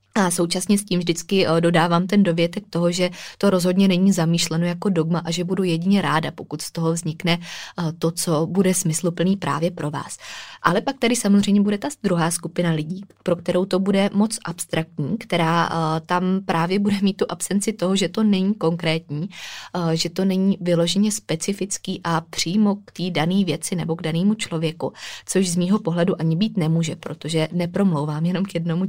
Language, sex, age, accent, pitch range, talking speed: Czech, female, 20-39, native, 165-190 Hz, 180 wpm